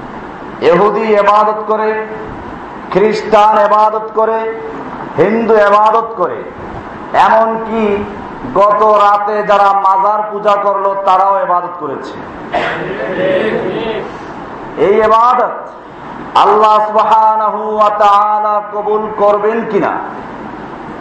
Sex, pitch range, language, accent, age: male, 210-225 Hz, Bengali, native, 50-69